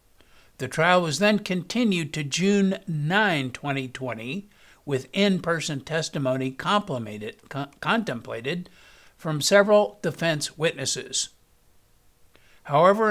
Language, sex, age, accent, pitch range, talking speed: English, male, 60-79, American, 140-185 Hz, 80 wpm